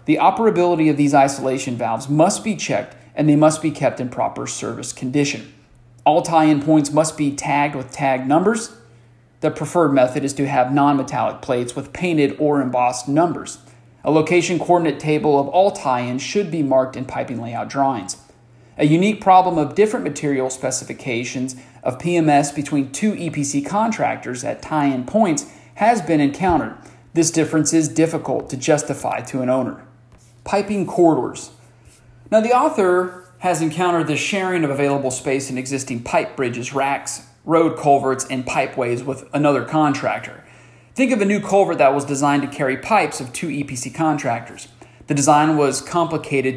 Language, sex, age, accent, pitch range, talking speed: English, male, 40-59, American, 130-160 Hz, 160 wpm